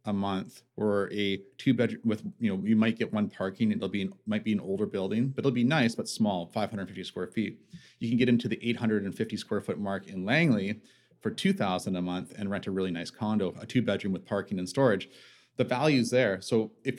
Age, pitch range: 30-49, 100-125 Hz